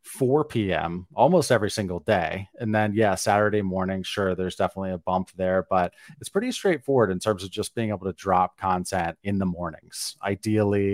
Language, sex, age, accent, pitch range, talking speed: English, male, 30-49, American, 95-115 Hz, 185 wpm